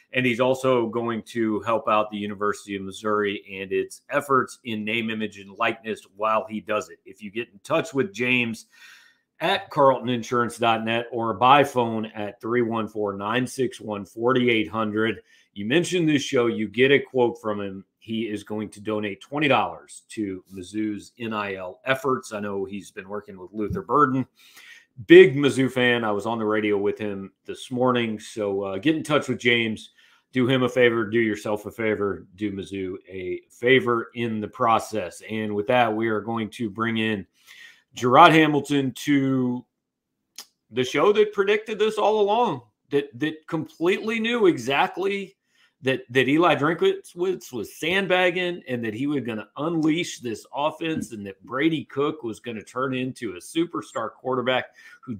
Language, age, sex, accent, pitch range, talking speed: English, 40-59, male, American, 105-140 Hz, 165 wpm